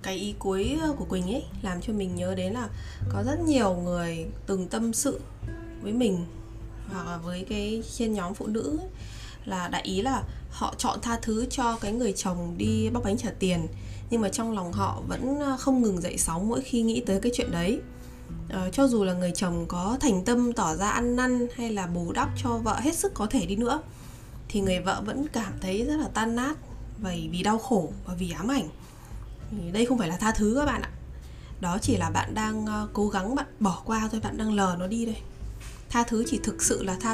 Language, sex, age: Vietnamese, female, 20-39